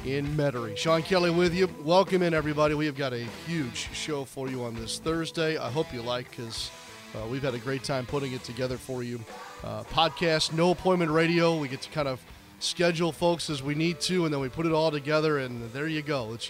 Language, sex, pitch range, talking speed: English, male, 125-160 Hz, 235 wpm